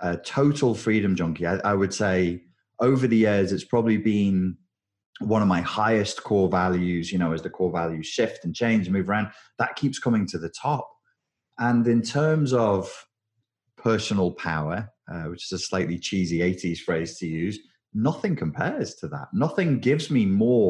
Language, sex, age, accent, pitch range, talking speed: English, male, 30-49, British, 90-130 Hz, 180 wpm